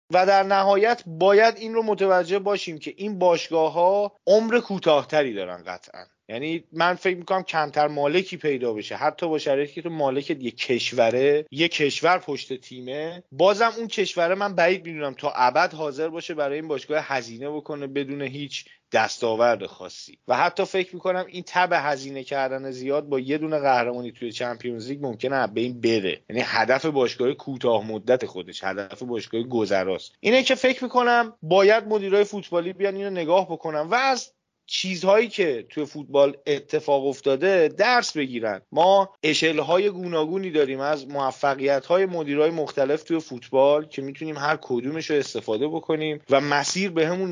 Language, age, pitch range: Persian, 30-49, 130-180 Hz